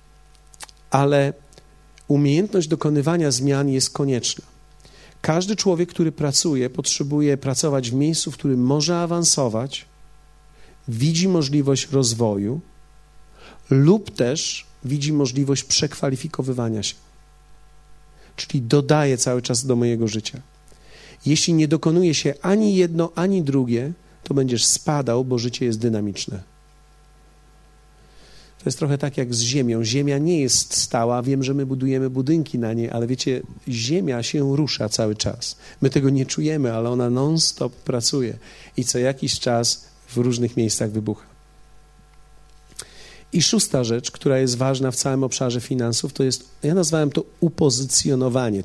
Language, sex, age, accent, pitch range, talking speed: Polish, male, 40-59, native, 120-150 Hz, 130 wpm